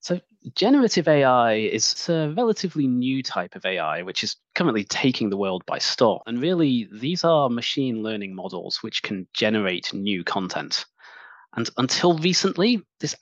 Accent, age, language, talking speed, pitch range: British, 20-39, English, 155 wpm, 110-150 Hz